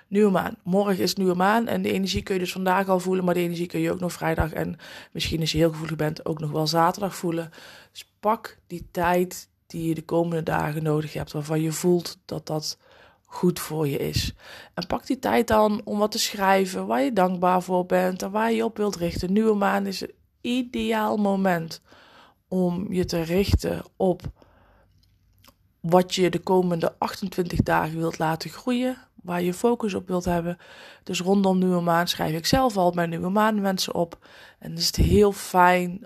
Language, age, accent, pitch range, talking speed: Dutch, 20-39, Dutch, 165-195 Hz, 200 wpm